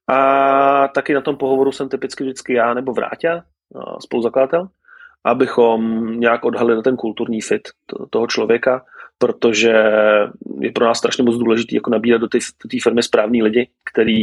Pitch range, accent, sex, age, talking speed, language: 115-135 Hz, native, male, 30-49, 150 wpm, Czech